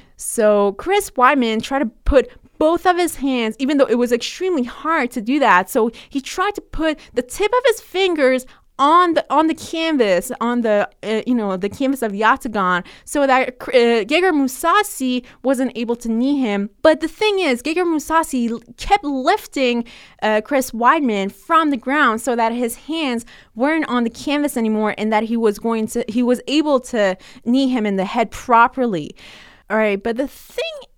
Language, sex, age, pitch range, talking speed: English, female, 20-39, 220-300 Hz, 190 wpm